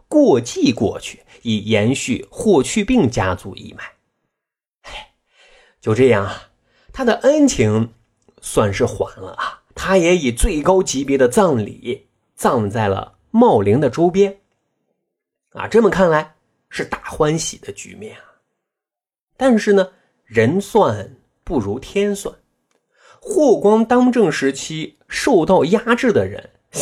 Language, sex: Chinese, male